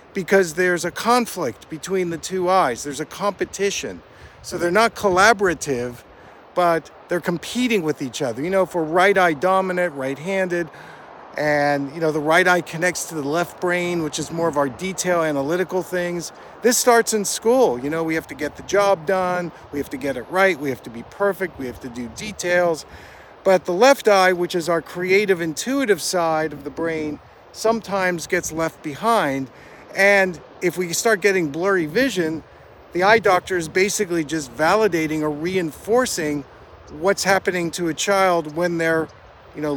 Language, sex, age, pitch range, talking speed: English, male, 50-69, 160-195 Hz, 180 wpm